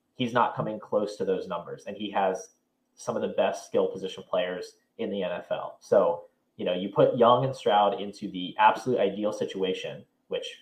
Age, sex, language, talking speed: 20-39, male, English, 190 wpm